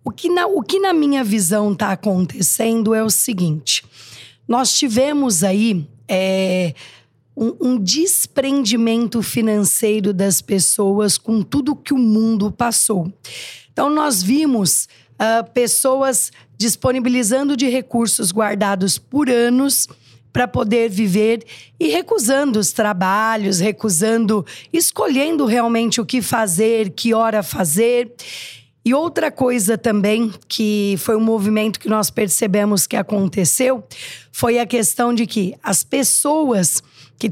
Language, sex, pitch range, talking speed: Portuguese, female, 195-245 Hz, 115 wpm